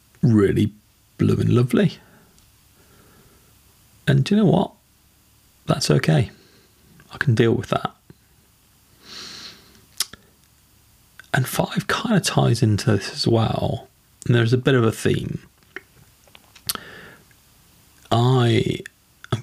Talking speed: 100 wpm